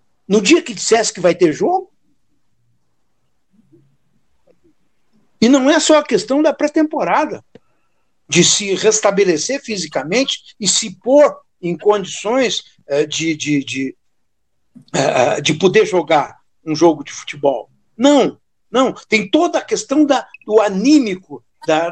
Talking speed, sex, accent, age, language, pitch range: 110 wpm, male, Brazilian, 60-79, Portuguese, 185-295 Hz